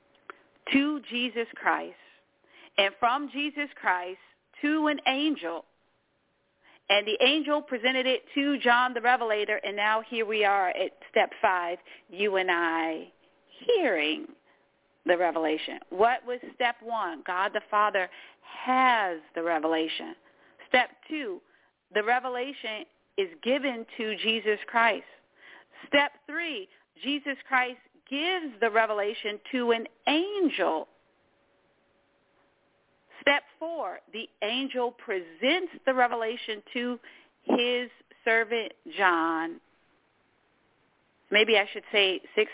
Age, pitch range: 40-59, 210-275 Hz